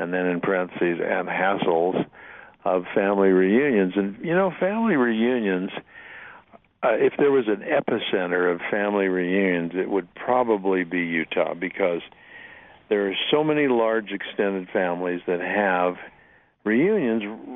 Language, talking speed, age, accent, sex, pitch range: English, 135 wpm, 60-79, American, male, 90-110 Hz